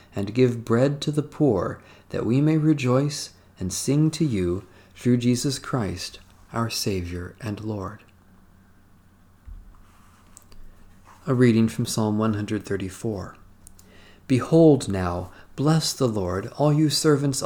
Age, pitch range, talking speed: 50-69, 95-130 Hz, 115 wpm